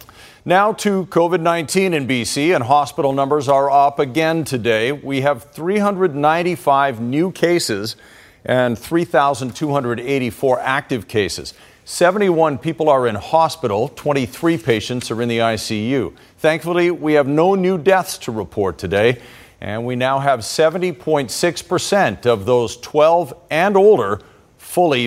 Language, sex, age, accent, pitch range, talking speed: English, male, 50-69, American, 125-165 Hz, 125 wpm